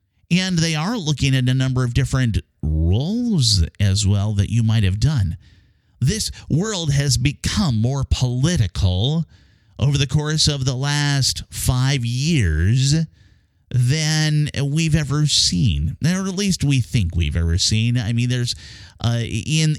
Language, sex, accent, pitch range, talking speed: English, male, American, 95-135 Hz, 145 wpm